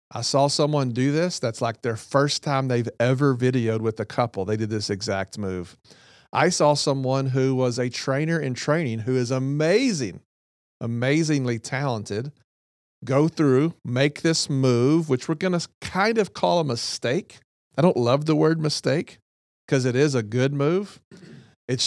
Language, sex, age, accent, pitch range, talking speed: English, male, 40-59, American, 115-145 Hz, 170 wpm